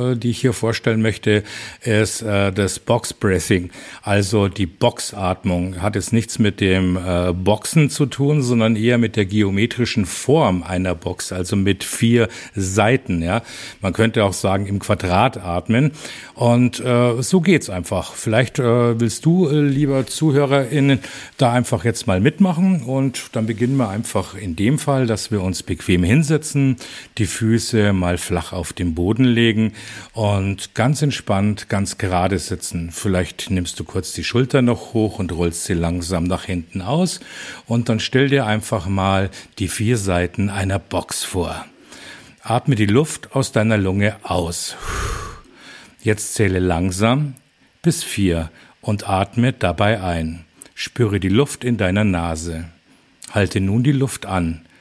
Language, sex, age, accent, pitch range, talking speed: German, male, 50-69, German, 95-120 Hz, 150 wpm